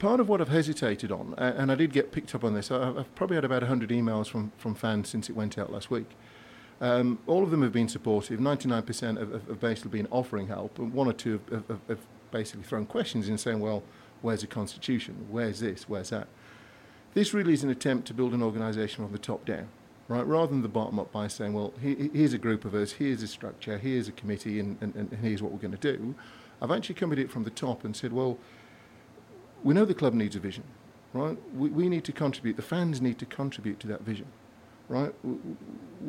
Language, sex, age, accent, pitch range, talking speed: English, male, 50-69, British, 110-140 Hz, 235 wpm